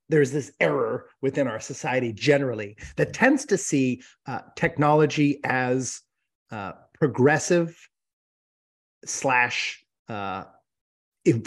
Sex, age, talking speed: male, 30-49, 95 wpm